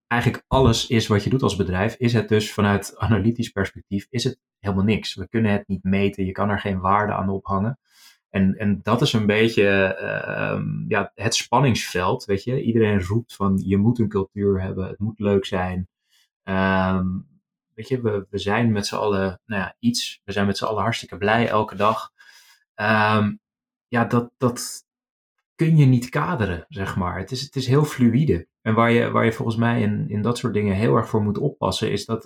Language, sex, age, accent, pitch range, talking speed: Dutch, male, 20-39, Dutch, 100-120 Hz, 190 wpm